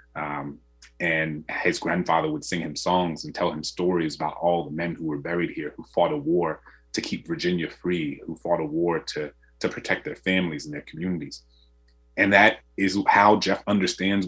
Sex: male